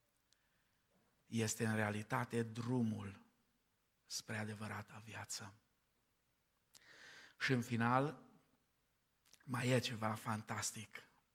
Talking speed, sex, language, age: 75 wpm, male, Romanian, 50-69